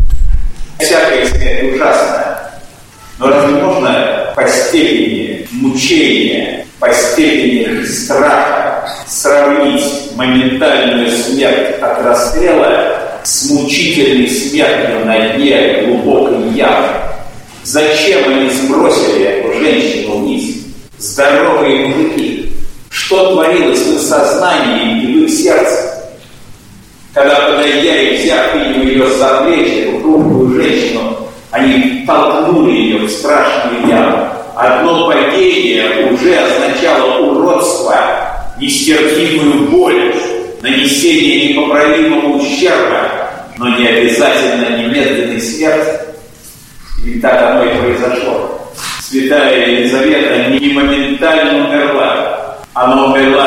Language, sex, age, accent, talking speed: Russian, male, 40-59, native, 90 wpm